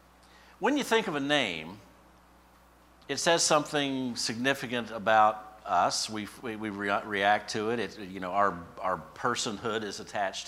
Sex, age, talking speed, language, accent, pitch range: male, 50-69, 150 wpm, English, American, 100-130 Hz